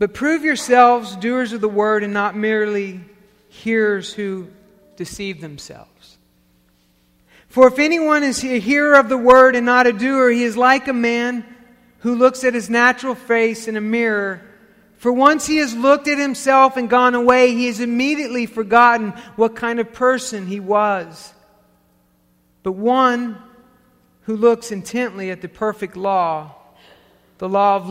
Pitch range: 140-235 Hz